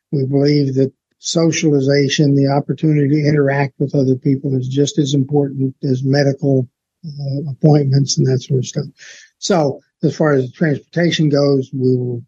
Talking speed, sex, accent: 155 wpm, male, American